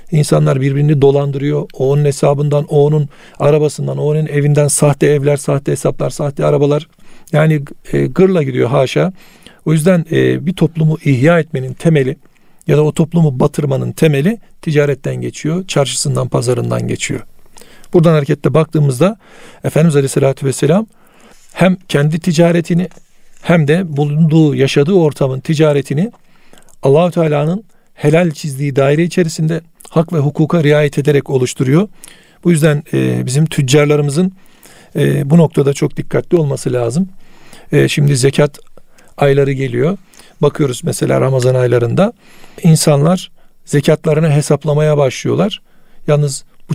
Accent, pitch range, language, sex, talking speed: native, 145-170 Hz, Turkish, male, 120 wpm